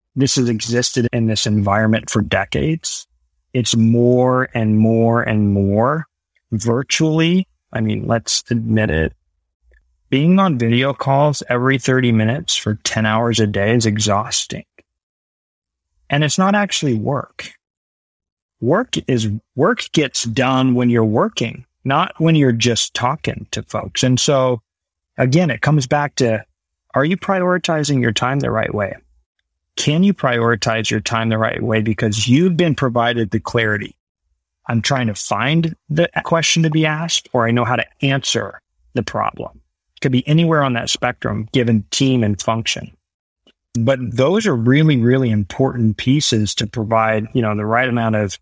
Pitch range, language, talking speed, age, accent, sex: 110-135 Hz, English, 155 wpm, 30-49, American, male